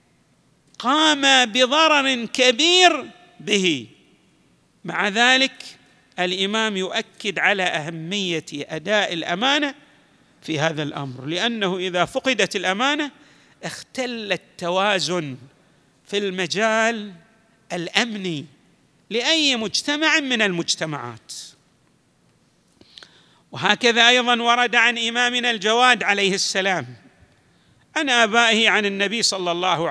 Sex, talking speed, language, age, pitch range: male, 85 wpm, Arabic, 50-69, 185-245 Hz